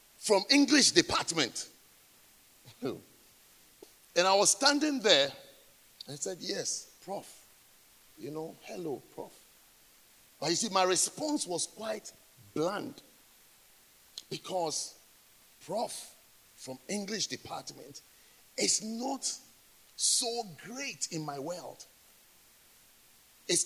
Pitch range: 190-280 Hz